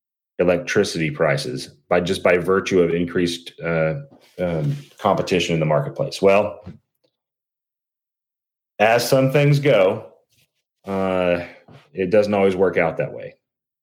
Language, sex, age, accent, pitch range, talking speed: English, male, 30-49, American, 85-105 Hz, 115 wpm